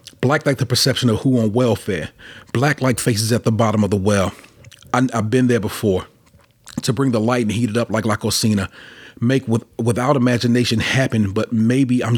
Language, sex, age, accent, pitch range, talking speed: English, male, 40-59, American, 110-130 Hz, 205 wpm